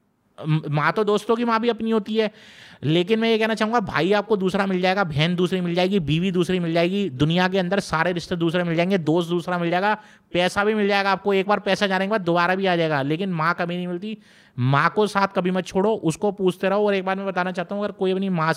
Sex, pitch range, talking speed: male, 160-205 Hz, 255 wpm